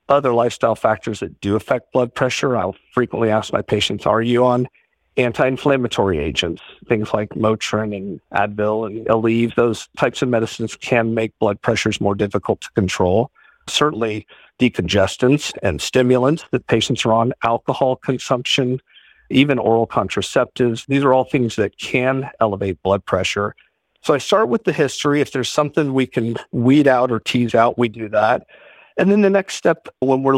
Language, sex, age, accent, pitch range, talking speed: English, male, 50-69, American, 105-130 Hz, 170 wpm